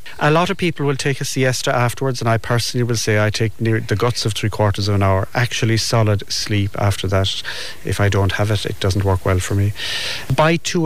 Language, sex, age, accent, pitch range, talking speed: English, male, 30-49, Irish, 100-120 Hz, 240 wpm